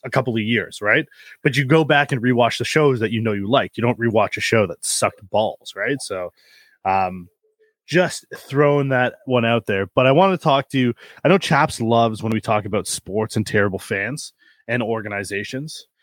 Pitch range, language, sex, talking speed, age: 110-145 Hz, English, male, 210 wpm, 20-39